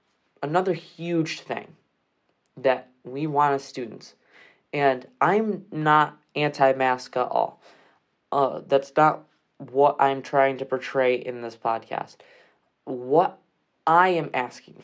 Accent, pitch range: American, 125-150 Hz